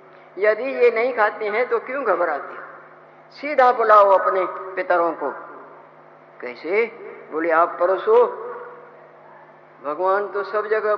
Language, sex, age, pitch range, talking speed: Hindi, female, 50-69, 185-225 Hz, 120 wpm